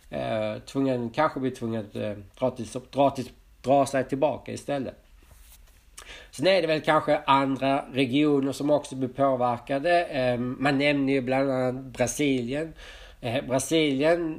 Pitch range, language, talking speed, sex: 120-140 Hz, Swedish, 145 wpm, male